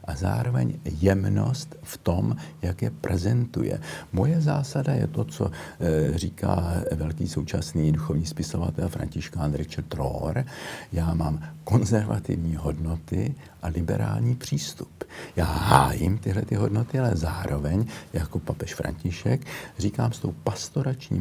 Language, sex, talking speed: Slovak, male, 115 wpm